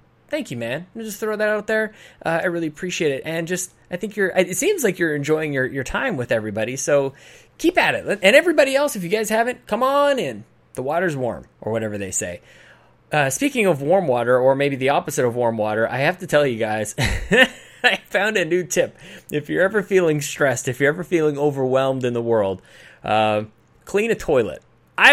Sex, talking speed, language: male, 215 wpm, English